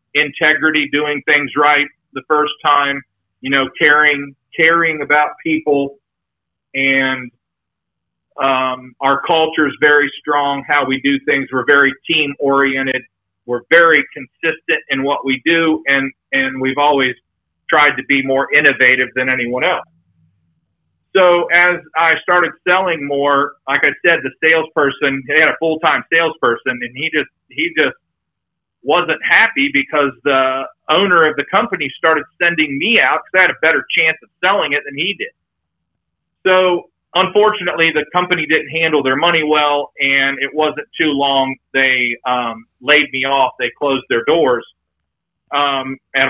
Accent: American